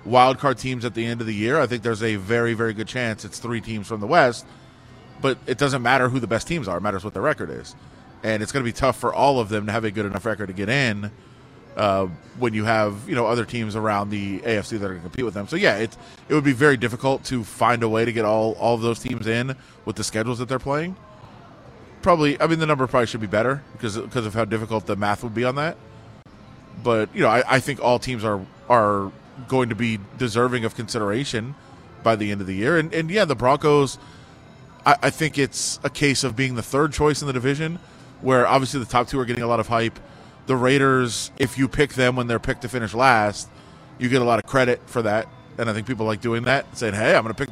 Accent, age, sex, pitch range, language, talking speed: American, 20-39, male, 110-135 Hz, English, 260 wpm